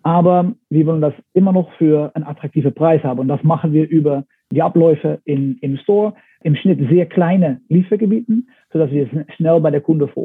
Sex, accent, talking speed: male, German, 195 wpm